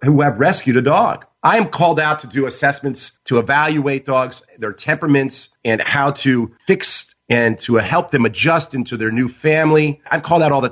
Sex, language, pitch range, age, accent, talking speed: male, English, 125-150 Hz, 40-59, American, 195 wpm